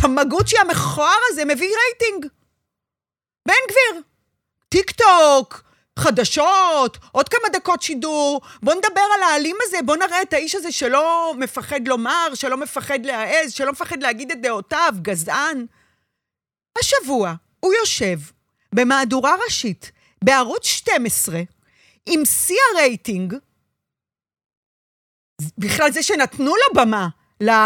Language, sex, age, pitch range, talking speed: Hebrew, female, 40-59, 220-360 Hz, 100 wpm